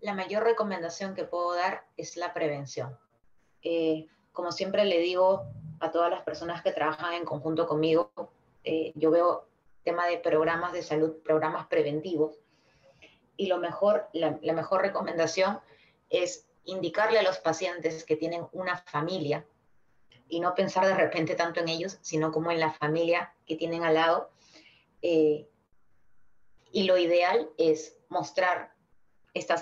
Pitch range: 160-185 Hz